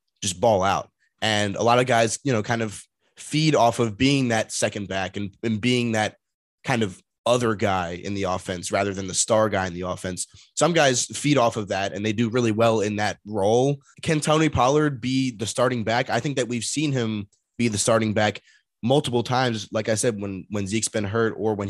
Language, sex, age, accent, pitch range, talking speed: English, male, 20-39, American, 100-120 Hz, 225 wpm